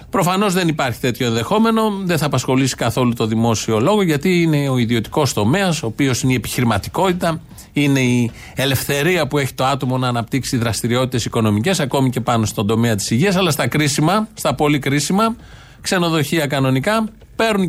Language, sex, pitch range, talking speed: Greek, male, 120-170 Hz, 165 wpm